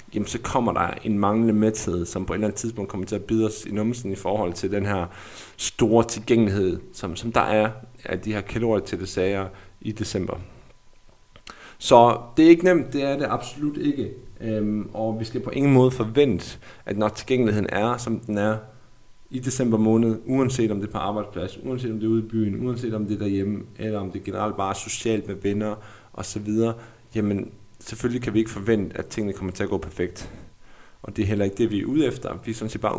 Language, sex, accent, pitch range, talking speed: Danish, male, native, 100-115 Hz, 225 wpm